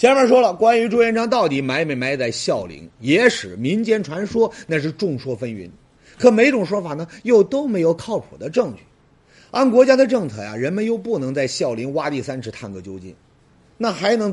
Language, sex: Chinese, male